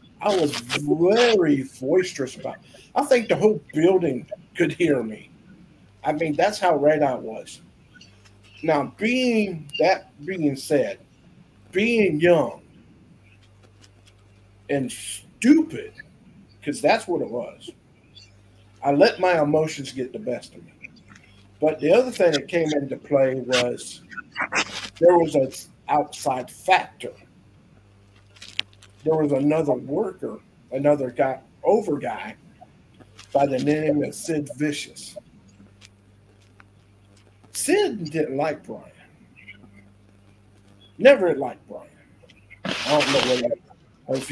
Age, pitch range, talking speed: 50-69, 100-160 Hz, 110 wpm